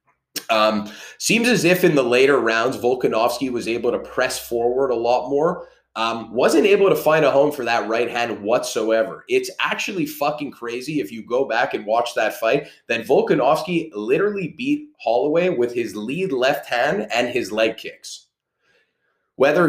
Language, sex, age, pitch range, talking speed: English, male, 30-49, 115-145 Hz, 170 wpm